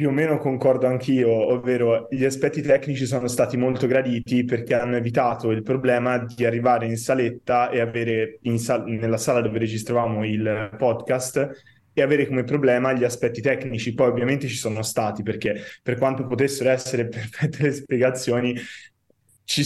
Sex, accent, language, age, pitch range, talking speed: male, native, Italian, 20-39, 115-140 Hz, 160 wpm